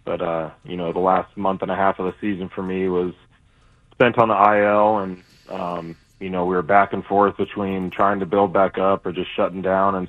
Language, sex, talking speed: English, male, 245 wpm